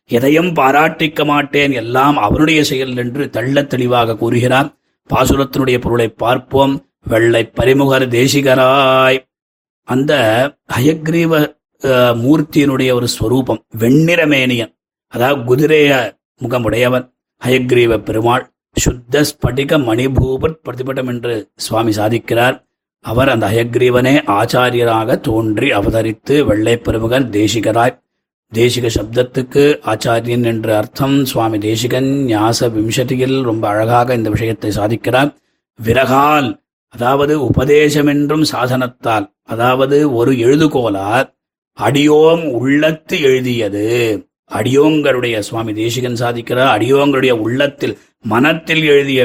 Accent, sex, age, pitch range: native, male, 30-49, 115-145 Hz